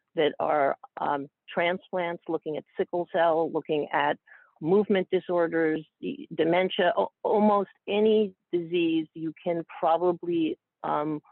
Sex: female